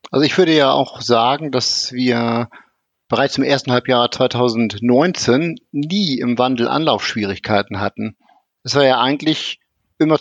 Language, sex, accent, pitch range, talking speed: German, male, German, 120-155 Hz, 135 wpm